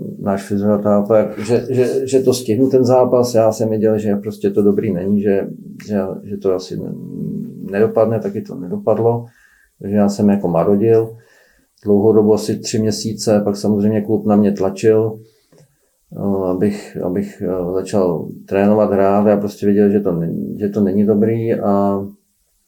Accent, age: native, 40-59